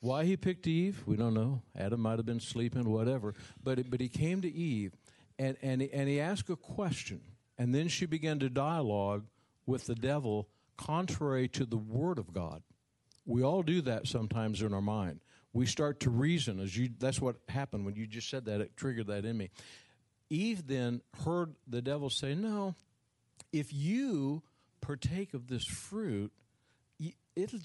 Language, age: English, 60-79